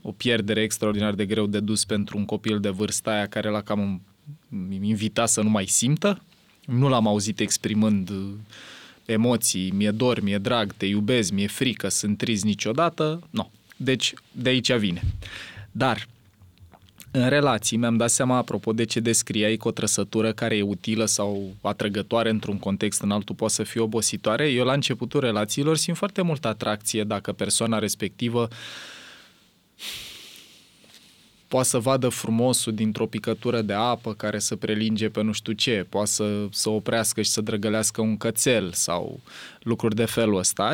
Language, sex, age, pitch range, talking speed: Romanian, male, 20-39, 105-120 Hz, 160 wpm